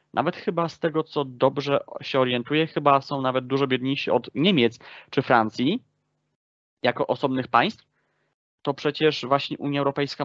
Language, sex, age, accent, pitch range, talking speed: Polish, male, 20-39, native, 125-155 Hz, 145 wpm